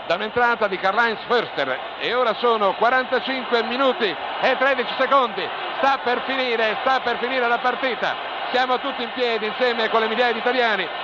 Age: 50-69